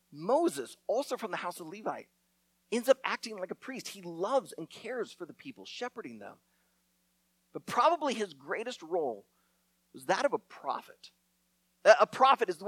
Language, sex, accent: English, male, American